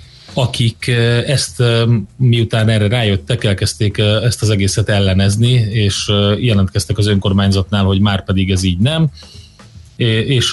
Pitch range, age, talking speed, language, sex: 100-125 Hz, 30-49, 120 wpm, Hungarian, male